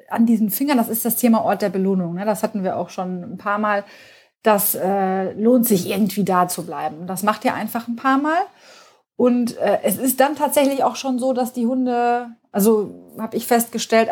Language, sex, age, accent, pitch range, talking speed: German, female, 30-49, German, 195-240 Hz, 210 wpm